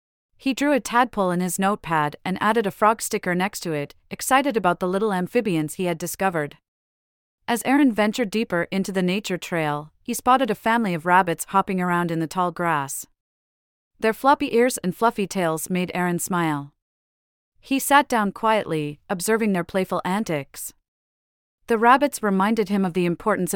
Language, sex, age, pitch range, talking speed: English, female, 30-49, 160-210 Hz, 170 wpm